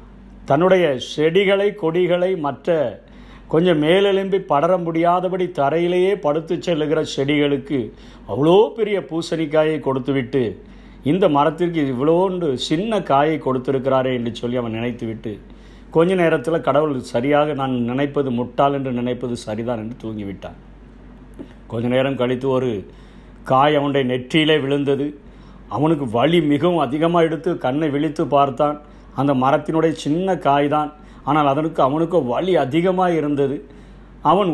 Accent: native